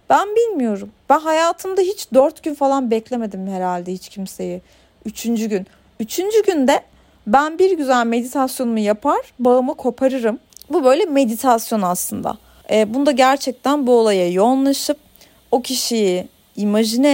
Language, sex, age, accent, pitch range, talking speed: Turkish, female, 40-59, native, 215-295 Hz, 125 wpm